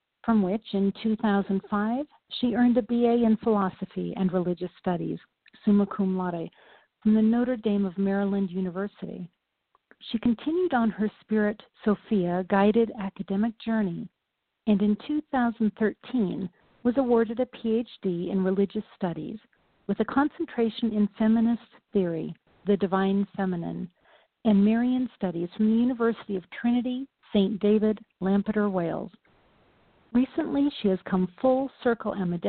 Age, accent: 50-69, American